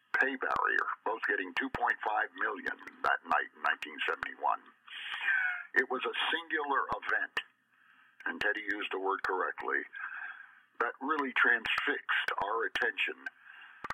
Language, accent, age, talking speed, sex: English, American, 50-69, 110 wpm, male